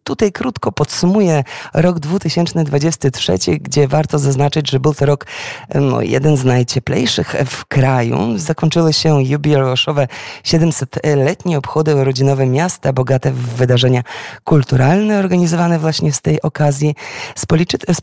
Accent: native